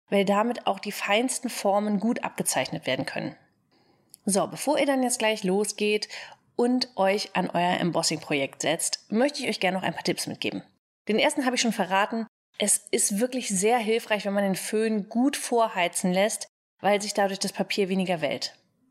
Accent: German